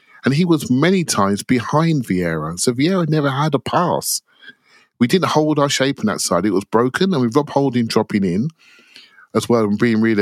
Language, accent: English, British